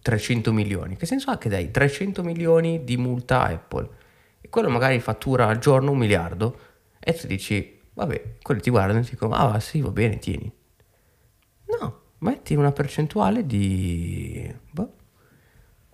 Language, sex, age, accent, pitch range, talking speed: Italian, male, 20-39, native, 100-120 Hz, 160 wpm